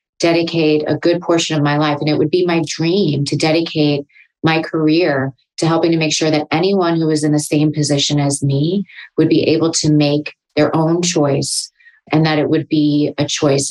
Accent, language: American, English